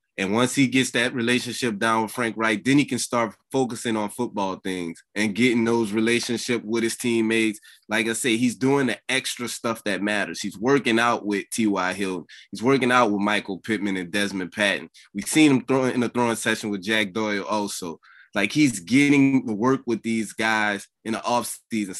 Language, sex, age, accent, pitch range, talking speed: English, male, 20-39, American, 110-130 Hz, 200 wpm